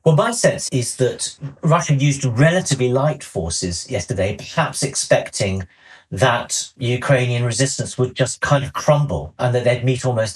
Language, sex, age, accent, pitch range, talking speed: English, male, 40-59, British, 105-140 Hz, 150 wpm